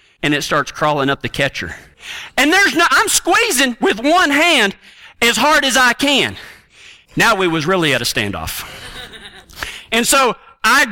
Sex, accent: male, American